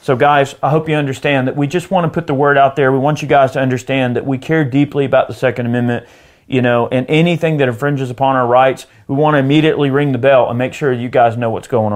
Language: English